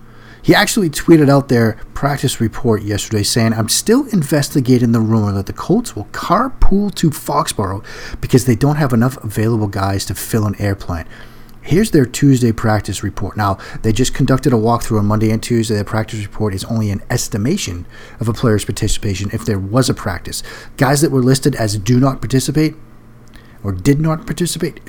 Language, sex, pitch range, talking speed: English, male, 110-140 Hz, 180 wpm